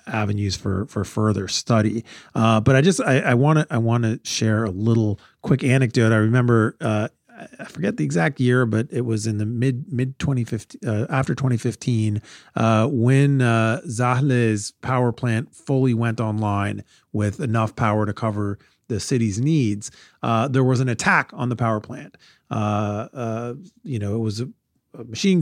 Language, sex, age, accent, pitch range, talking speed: English, male, 40-59, American, 110-135 Hz, 175 wpm